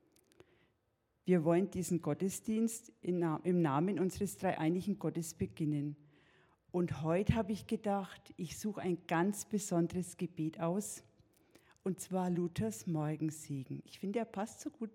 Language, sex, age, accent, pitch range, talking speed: German, female, 50-69, German, 155-195 Hz, 130 wpm